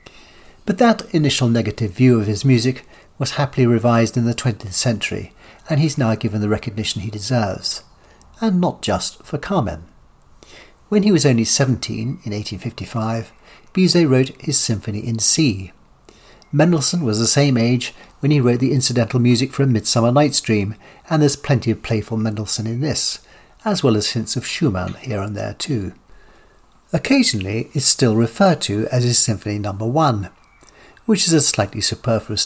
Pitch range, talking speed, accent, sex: 105-130 Hz, 165 wpm, British, male